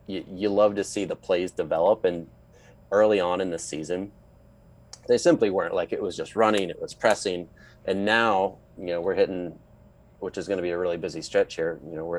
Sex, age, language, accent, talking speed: male, 30-49, English, American, 215 wpm